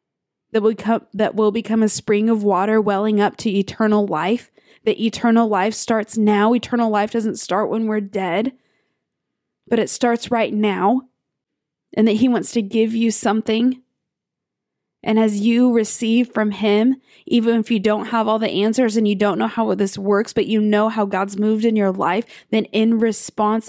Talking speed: 180 wpm